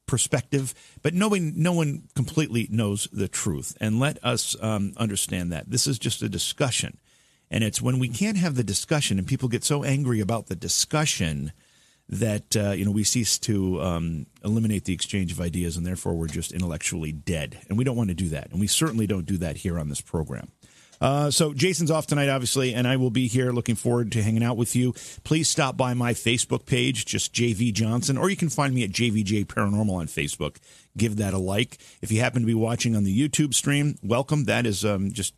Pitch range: 95-130 Hz